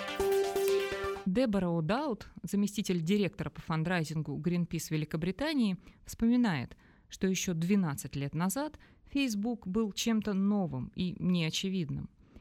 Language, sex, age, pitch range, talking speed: Russian, female, 20-39, 160-205 Hz, 95 wpm